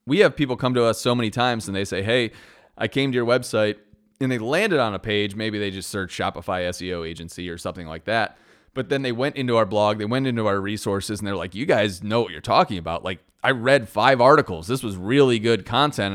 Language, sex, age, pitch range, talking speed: English, male, 30-49, 100-130 Hz, 250 wpm